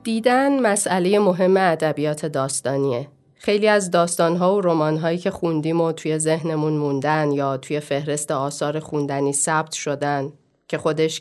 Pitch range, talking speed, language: 145-185 Hz, 135 wpm, Persian